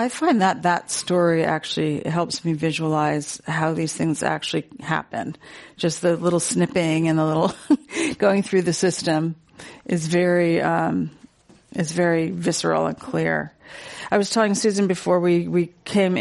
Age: 40-59